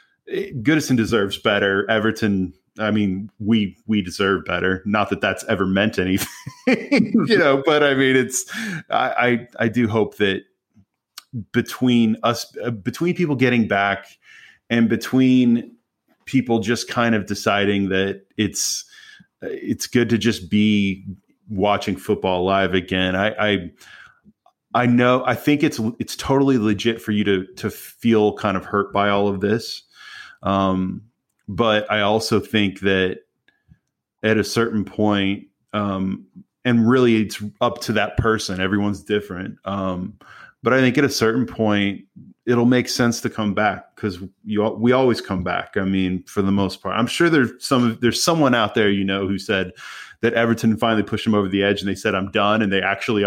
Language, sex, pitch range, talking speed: English, male, 100-120 Hz, 165 wpm